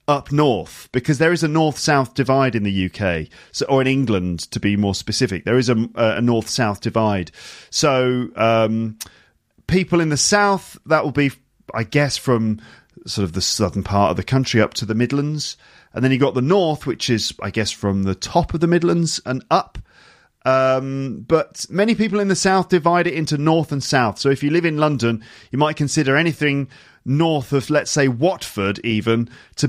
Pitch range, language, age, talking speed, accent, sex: 115-155 Hz, English, 40-59, 195 wpm, British, male